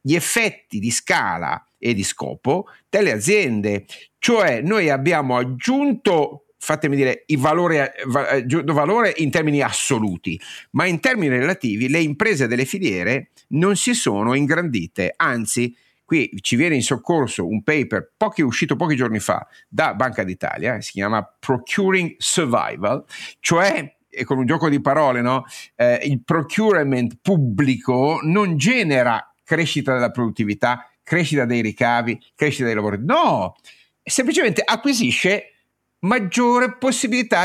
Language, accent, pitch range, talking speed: Italian, native, 120-175 Hz, 130 wpm